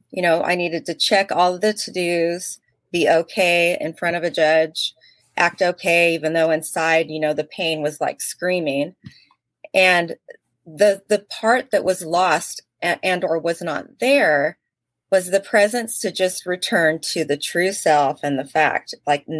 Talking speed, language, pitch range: 175 wpm, English, 155-190 Hz